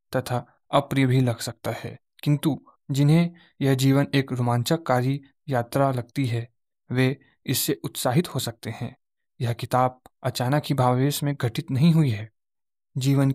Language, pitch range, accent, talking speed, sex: Hindi, 125-145 Hz, native, 145 wpm, male